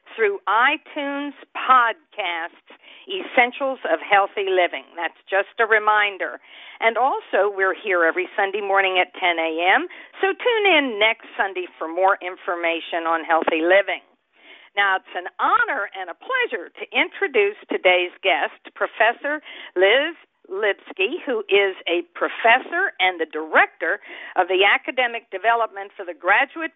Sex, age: female, 50-69